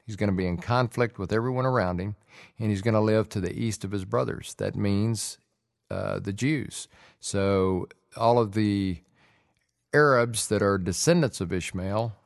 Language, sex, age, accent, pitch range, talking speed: English, male, 50-69, American, 100-125 Hz, 175 wpm